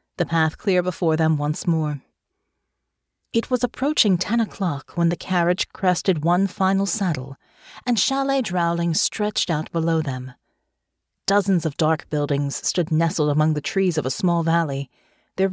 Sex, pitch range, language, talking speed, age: female, 160-225 Hz, English, 155 wpm, 40-59